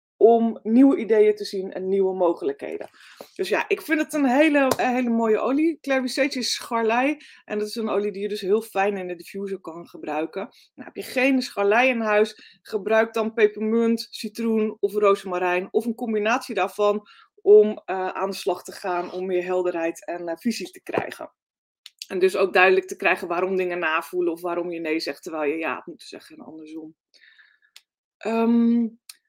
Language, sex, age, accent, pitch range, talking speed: Dutch, female, 20-39, Dutch, 195-245 Hz, 190 wpm